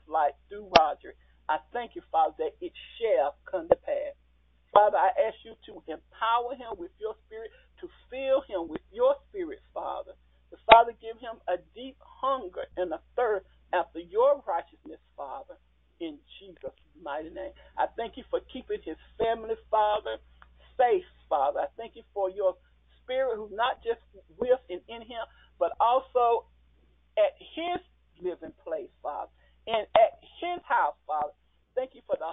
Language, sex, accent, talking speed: English, male, American, 160 wpm